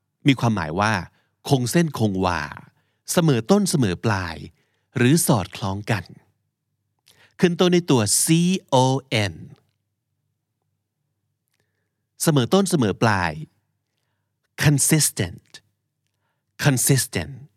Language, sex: Thai, male